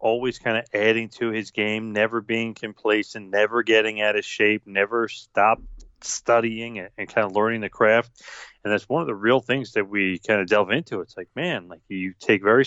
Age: 30-49